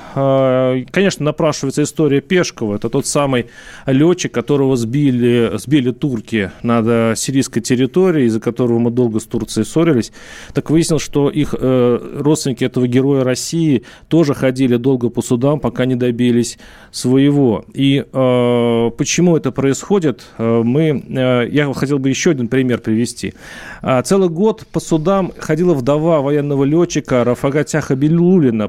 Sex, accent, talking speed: male, native, 130 wpm